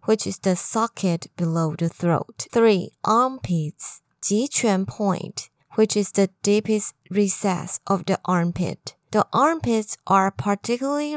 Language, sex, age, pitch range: Chinese, female, 20-39, 175-230 Hz